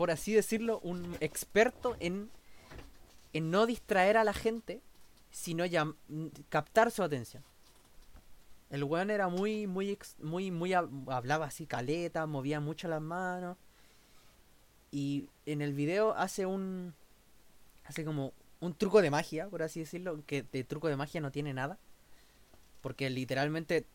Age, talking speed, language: 20-39, 140 wpm, Spanish